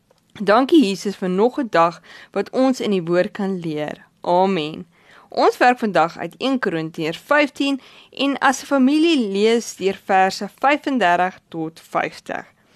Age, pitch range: 20-39, 175-255 Hz